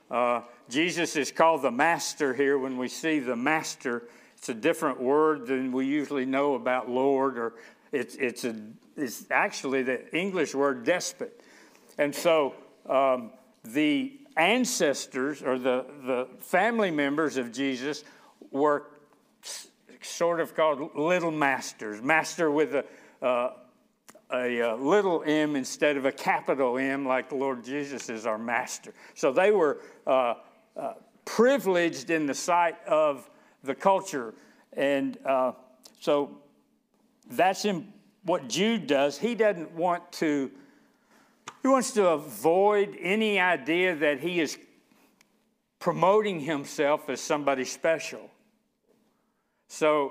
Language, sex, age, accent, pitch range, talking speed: English, male, 60-79, American, 135-195 Hz, 130 wpm